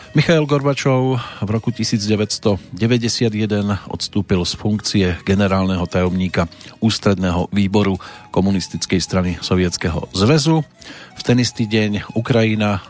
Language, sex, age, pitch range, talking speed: Slovak, male, 40-59, 95-120 Hz, 100 wpm